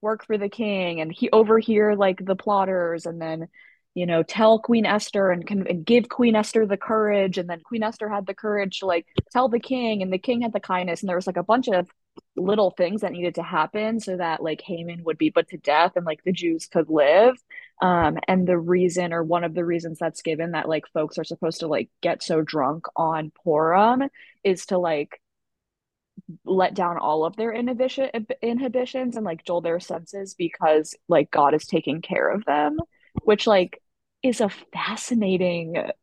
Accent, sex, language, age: American, female, English, 20-39